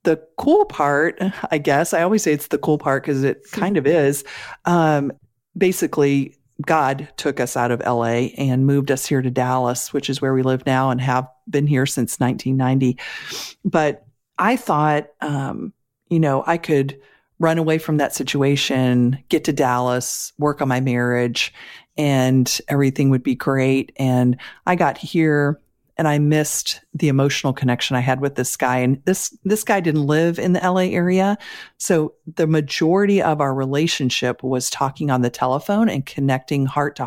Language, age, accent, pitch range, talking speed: English, 40-59, American, 130-160 Hz, 175 wpm